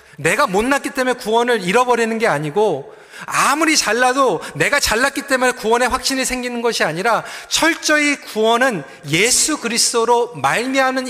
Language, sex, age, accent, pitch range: Korean, male, 40-59, native, 205-290 Hz